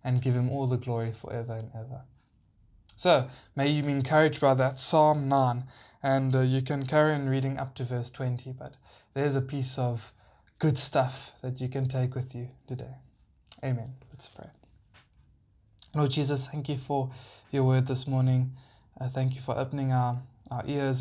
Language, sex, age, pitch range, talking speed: English, male, 20-39, 125-135 Hz, 180 wpm